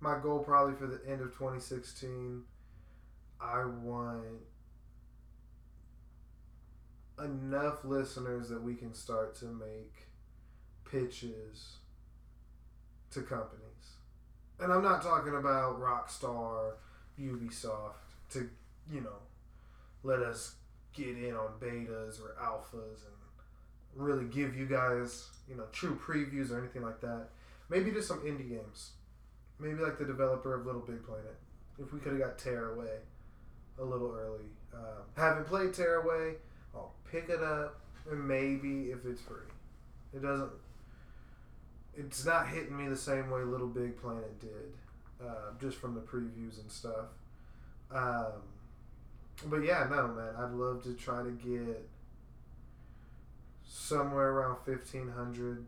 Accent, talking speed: American, 130 wpm